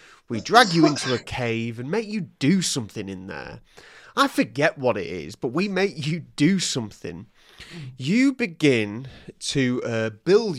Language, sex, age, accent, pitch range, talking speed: English, male, 30-49, British, 110-155 Hz, 165 wpm